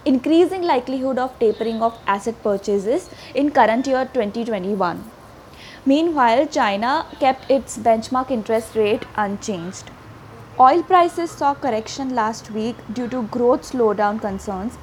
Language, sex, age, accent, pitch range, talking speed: English, female, 20-39, Indian, 220-270 Hz, 120 wpm